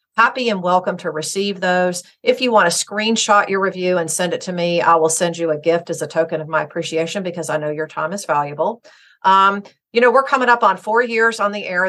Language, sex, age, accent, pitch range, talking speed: English, female, 50-69, American, 160-205 Hz, 245 wpm